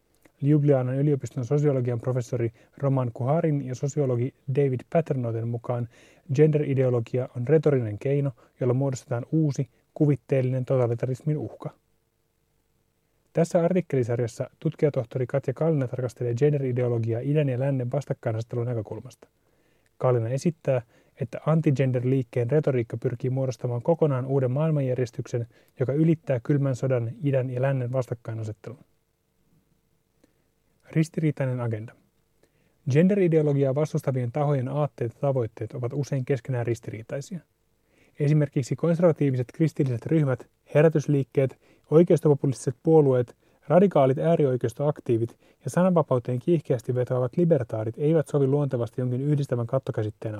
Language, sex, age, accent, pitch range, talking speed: Finnish, male, 30-49, native, 125-150 Hz, 100 wpm